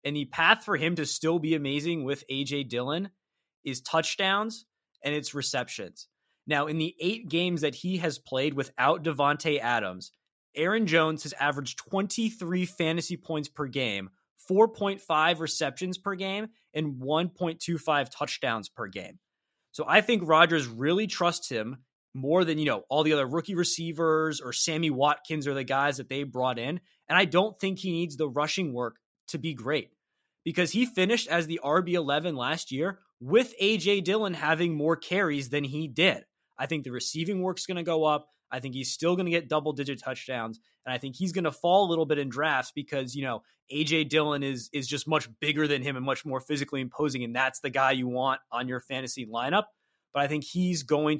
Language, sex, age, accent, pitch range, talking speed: English, male, 20-39, American, 135-175 Hz, 195 wpm